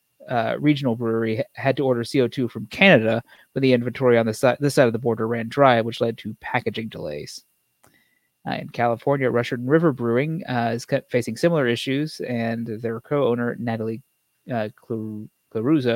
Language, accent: English, American